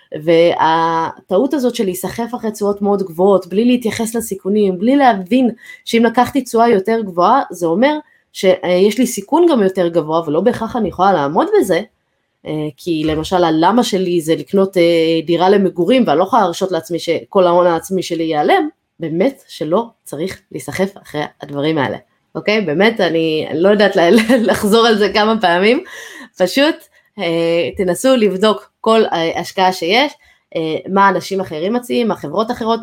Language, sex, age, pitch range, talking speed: Hebrew, female, 20-39, 175-235 Hz, 145 wpm